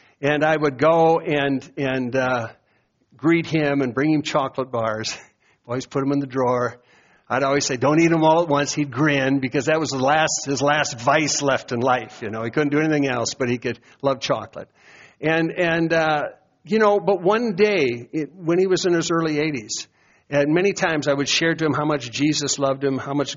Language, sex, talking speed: English, male, 220 wpm